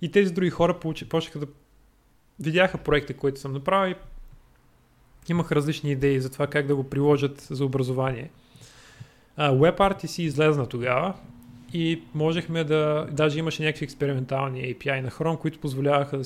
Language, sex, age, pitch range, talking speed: Bulgarian, male, 30-49, 135-160 Hz, 140 wpm